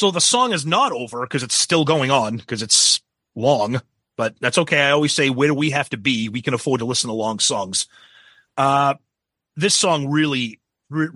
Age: 30-49